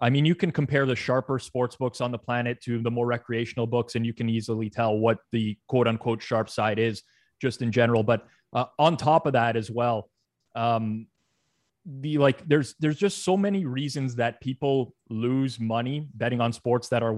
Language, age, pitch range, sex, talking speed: English, 20-39, 120-150 Hz, male, 205 wpm